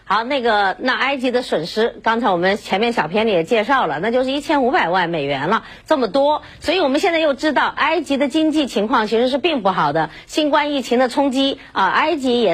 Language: Chinese